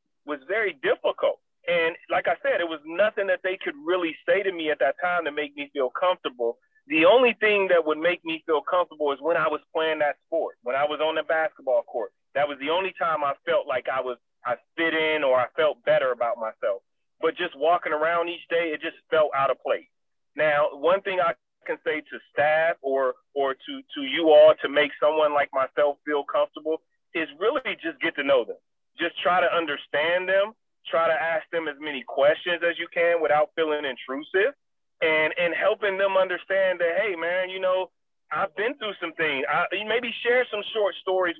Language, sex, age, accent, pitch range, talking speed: English, male, 30-49, American, 155-200 Hz, 210 wpm